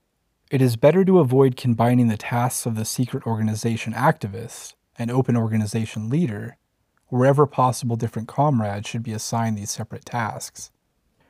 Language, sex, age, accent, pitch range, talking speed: English, male, 30-49, American, 110-130 Hz, 145 wpm